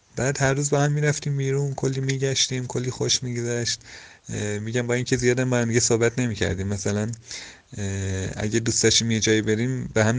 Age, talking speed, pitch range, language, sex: 30-49, 190 wpm, 100-135 Hz, Persian, male